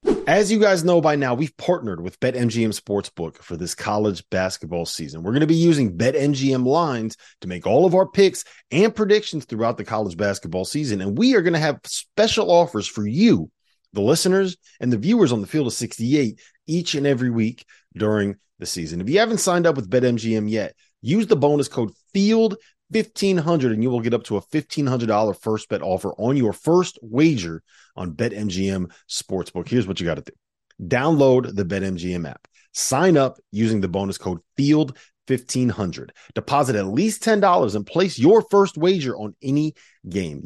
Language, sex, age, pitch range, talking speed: English, male, 30-49, 105-165 Hz, 185 wpm